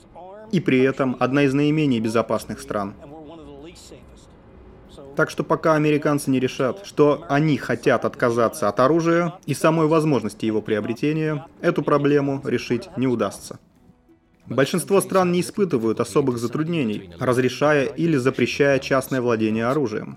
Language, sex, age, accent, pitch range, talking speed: Russian, male, 30-49, native, 120-155 Hz, 125 wpm